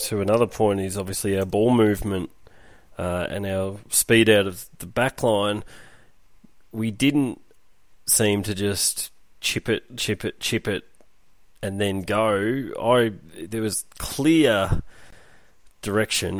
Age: 30-49